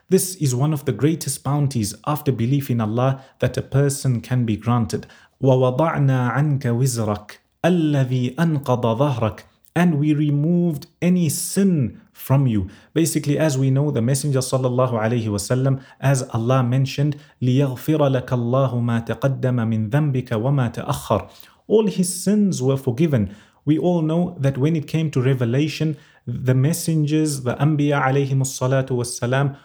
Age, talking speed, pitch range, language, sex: 30-49, 115 wpm, 125-150 Hz, English, male